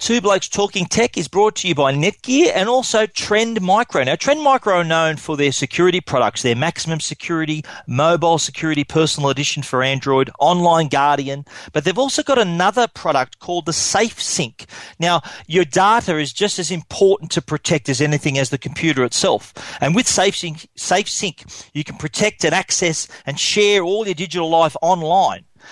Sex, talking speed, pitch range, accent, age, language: male, 170 wpm, 150-190 Hz, Australian, 40-59, English